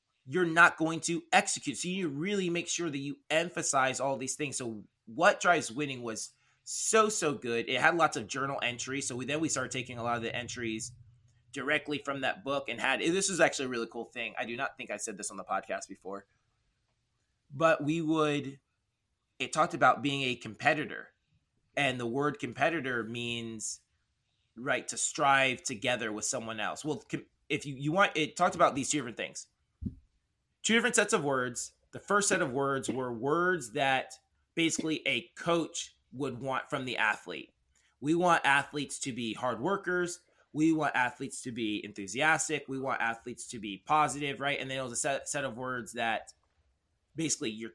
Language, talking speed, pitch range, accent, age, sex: English, 190 wpm, 115-155 Hz, American, 20-39, male